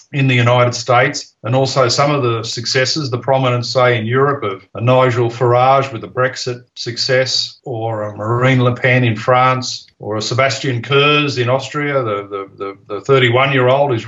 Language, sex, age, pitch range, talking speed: English, male, 50-69, 115-135 Hz, 185 wpm